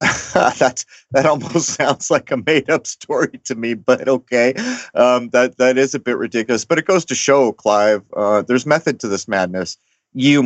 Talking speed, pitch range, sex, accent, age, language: 185 wpm, 110-130 Hz, male, American, 40-59, English